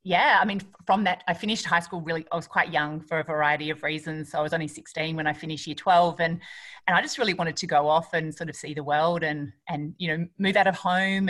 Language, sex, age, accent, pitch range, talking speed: English, female, 30-49, Australian, 155-180 Hz, 275 wpm